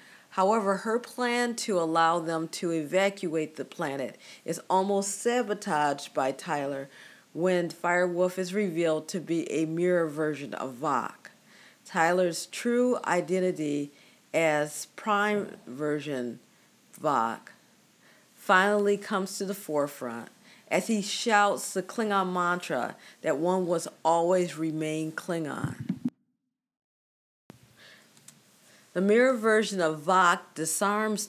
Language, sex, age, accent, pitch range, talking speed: English, female, 40-59, American, 155-205 Hz, 105 wpm